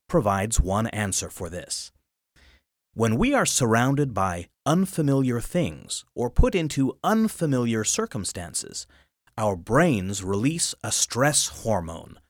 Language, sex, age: Japanese, male, 30-49